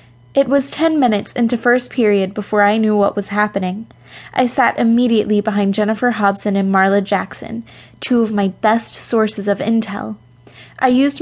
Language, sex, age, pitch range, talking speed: English, female, 10-29, 200-240 Hz, 165 wpm